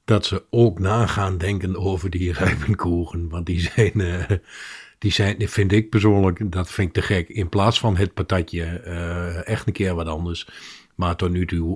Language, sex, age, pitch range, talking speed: Dutch, male, 50-69, 90-110 Hz, 180 wpm